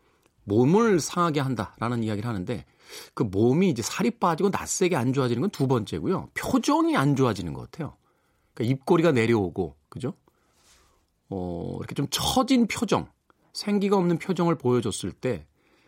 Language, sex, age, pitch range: Korean, male, 40-59, 100-145 Hz